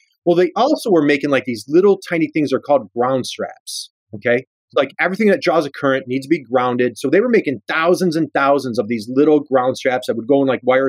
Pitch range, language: 135-180 Hz, English